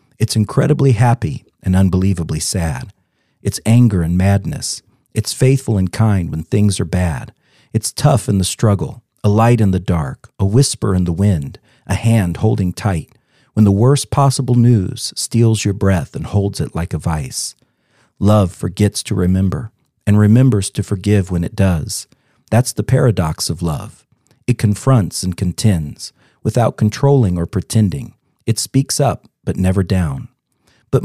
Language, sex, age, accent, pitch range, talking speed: English, male, 40-59, American, 95-125 Hz, 160 wpm